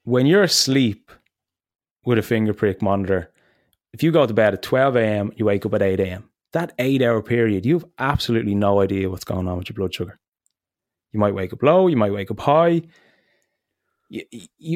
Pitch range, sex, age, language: 100-130 Hz, male, 20-39, English